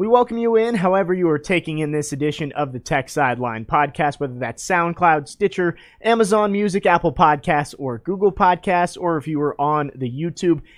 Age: 30-49